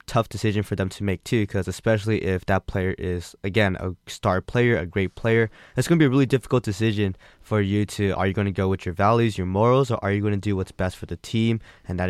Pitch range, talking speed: 95-110 Hz, 270 wpm